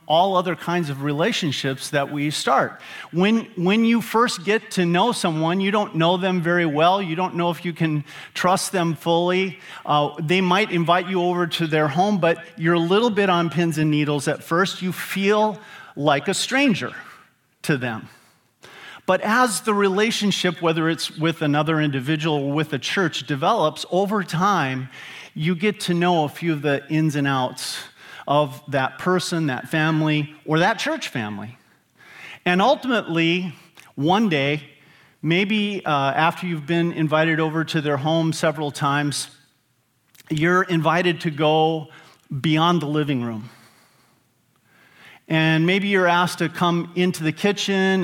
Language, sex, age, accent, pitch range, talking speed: English, male, 40-59, American, 150-185 Hz, 160 wpm